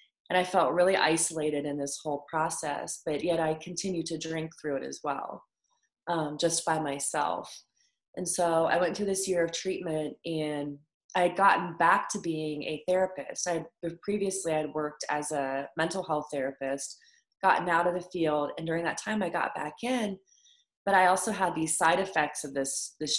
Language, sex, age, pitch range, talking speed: English, female, 30-49, 145-185 Hz, 190 wpm